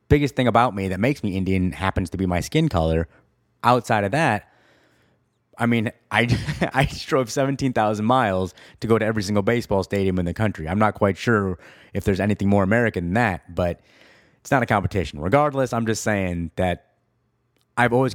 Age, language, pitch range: 30-49, English, 95-120 Hz